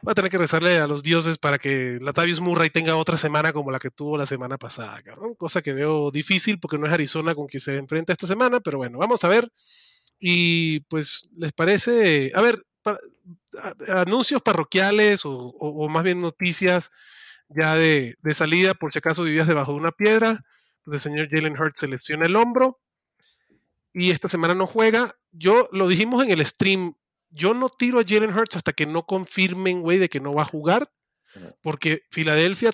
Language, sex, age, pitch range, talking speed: Spanish, male, 30-49, 150-195 Hz, 190 wpm